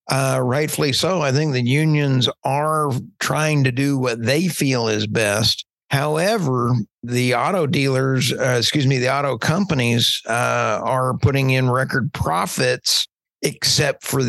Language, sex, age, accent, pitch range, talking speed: English, male, 50-69, American, 115-140 Hz, 145 wpm